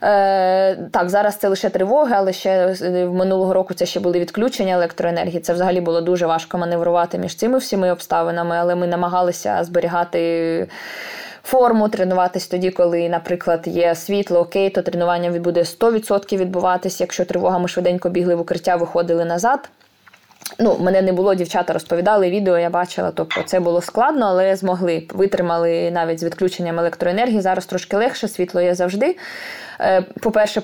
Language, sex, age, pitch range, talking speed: Ukrainian, female, 20-39, 170-190 Hz, 155 wpm